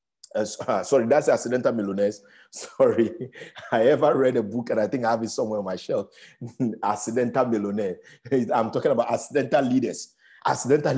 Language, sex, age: English, male, 50-69